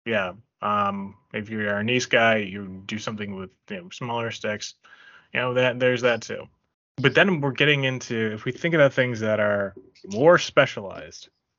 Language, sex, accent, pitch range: English, male, American, 110-140 Hz